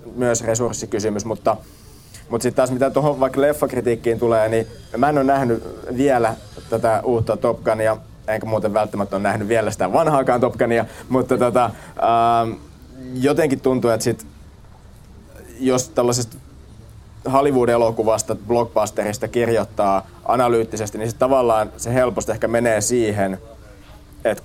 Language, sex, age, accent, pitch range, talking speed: Finnish, male, 20-39, native, 105-125 Hz, 125 wpm